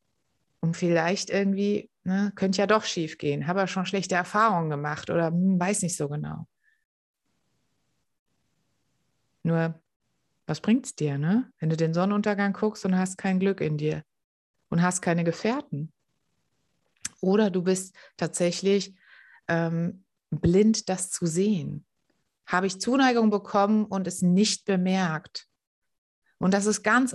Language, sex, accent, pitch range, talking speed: German, female, German, 170-225 Hz, 135 wpm